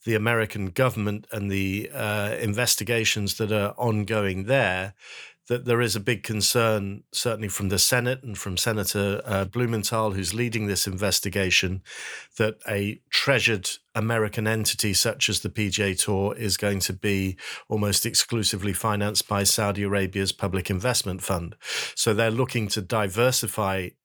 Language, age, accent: English, 50-69, British